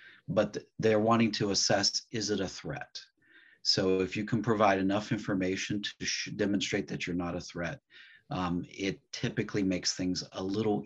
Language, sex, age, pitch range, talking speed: English, male, 40-59, 90-105 Hz, 165 wpm